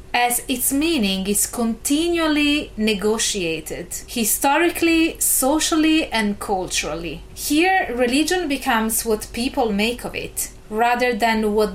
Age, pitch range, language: 30-49, 200-260 Hz, English